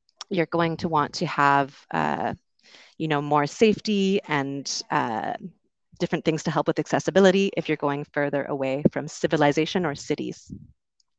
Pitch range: 145-185 Hz